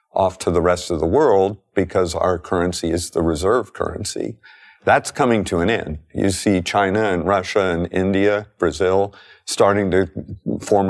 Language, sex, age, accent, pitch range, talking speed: English, male, 50-69, American, 95-110 Hz, 165 wpm